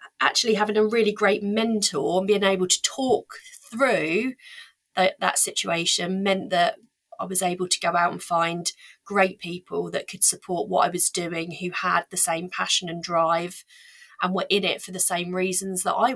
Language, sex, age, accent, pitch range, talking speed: English, female, 30-49, British, 185-235 Hz, 185 wpm